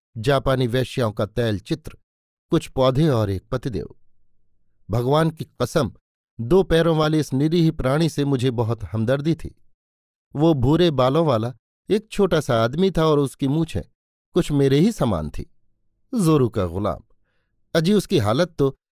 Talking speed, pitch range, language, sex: 150 wpm, 115-160 Hz, Hindi, male